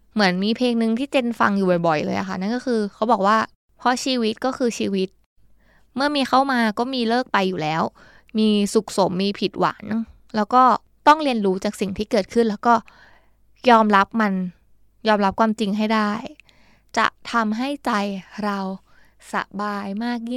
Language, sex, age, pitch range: Thai, female, 20-39, 200-245 Hz